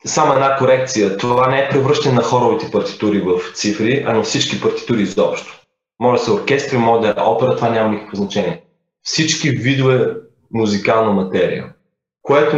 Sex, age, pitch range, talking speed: male, 20-39, 105-135 Hz, 160 wpm